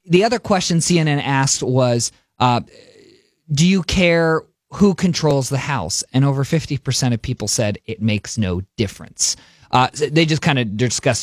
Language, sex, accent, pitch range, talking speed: English, male, American, 120-160 Hz, 165 wpm